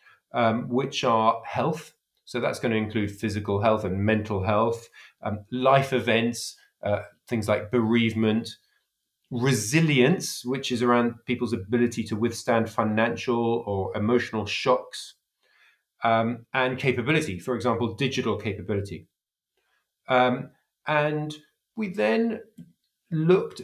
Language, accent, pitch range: English, British, 115-145 Hz